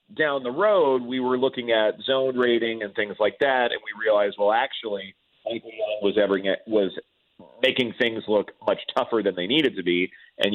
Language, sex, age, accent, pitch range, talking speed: English, male, 40-59, American, 100-130 Hz, 175 wpm